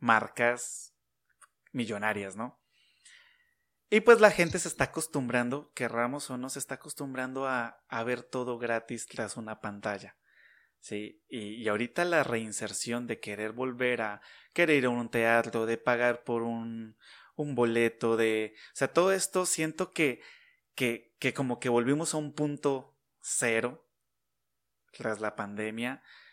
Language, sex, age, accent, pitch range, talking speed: Spanish, male, 30-49, Mexican, 115-145 Hz, 145 wpm